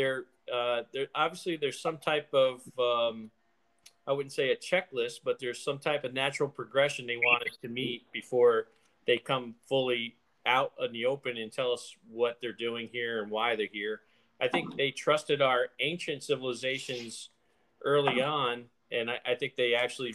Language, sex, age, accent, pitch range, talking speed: English, male, 40-59, American, 115-145 Hz, 175 wpm